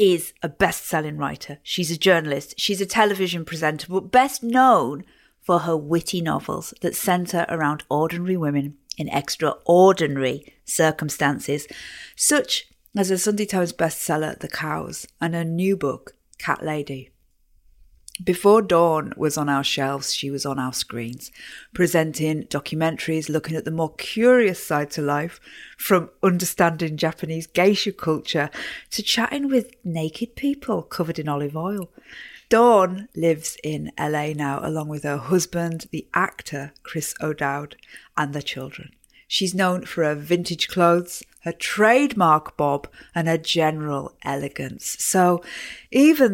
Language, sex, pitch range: English, female, 150-185 Hz